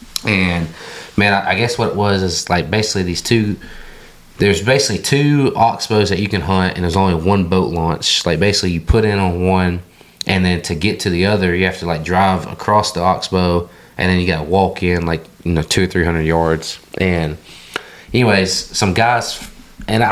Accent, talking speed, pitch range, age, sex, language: American, 205 wpm, 85-100 Hz, 20-39, male, English